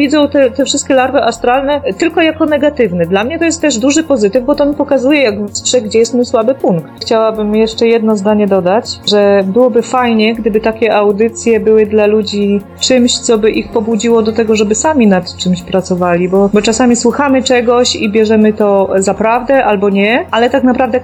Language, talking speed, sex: Polish, 195 wpm, female